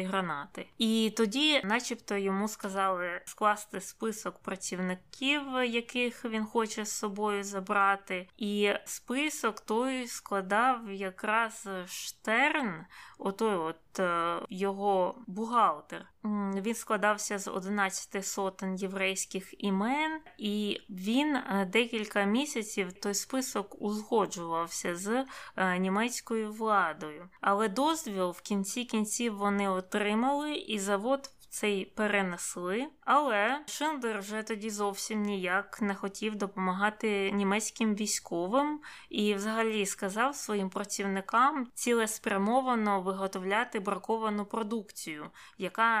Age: 20-39